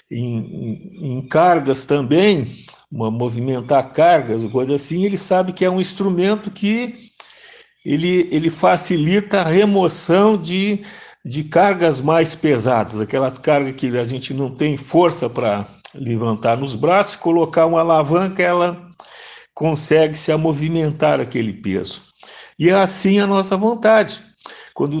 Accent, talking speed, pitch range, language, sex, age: Brazilian, 130 wpm, 130-185 Hz, Portuguese, male, 60-79